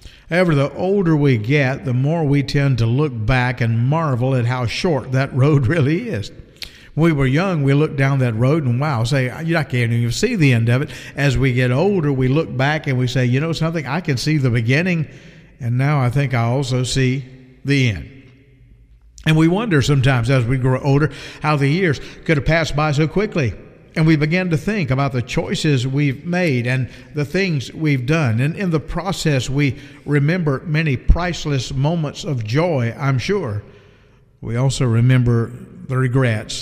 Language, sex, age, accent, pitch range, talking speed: English, male, 50-69, American, 125-150 Hz, 195 wpm